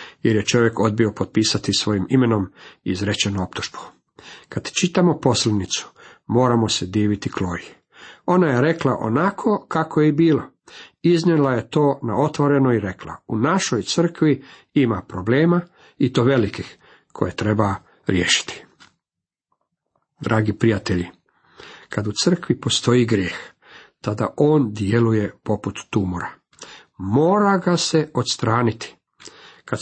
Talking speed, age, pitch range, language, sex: 120 wpm, 50-69, 105-145 Hz, Croatian, male